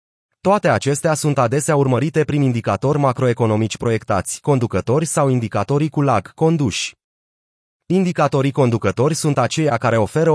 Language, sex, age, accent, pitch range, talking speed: Romanian, male, 30-49, native, 115-150 Hz, 120 wpm